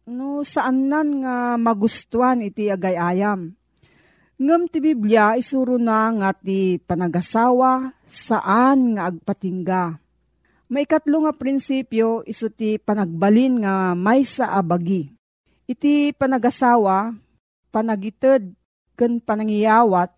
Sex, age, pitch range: female, 40-59, 195-255 Hz